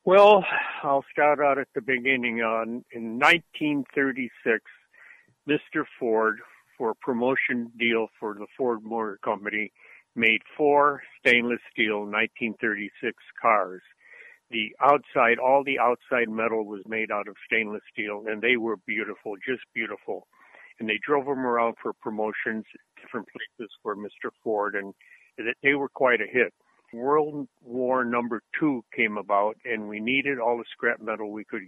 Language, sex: English, male